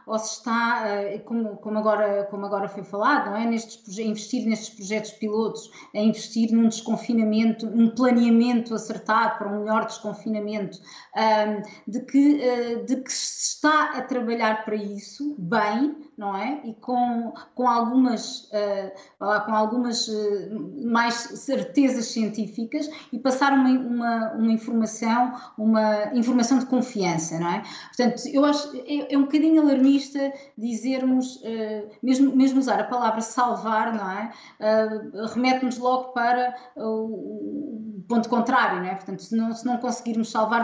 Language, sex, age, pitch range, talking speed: Portuguese, female, 20-39, 215-245 Hz, 125 wpm